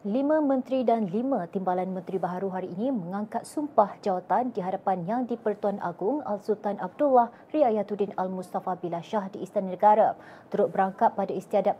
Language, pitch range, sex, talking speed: Malay, 195-240 Hz, female, 150 wpm